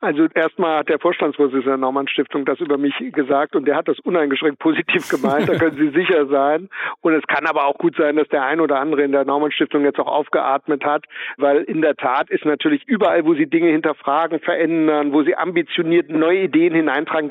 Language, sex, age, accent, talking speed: German, male, 60-79, German, 215 wpm